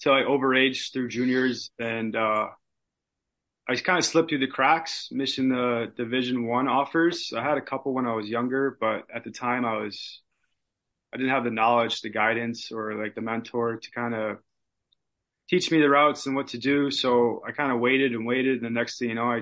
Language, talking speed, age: English, 220 wpm, 20-39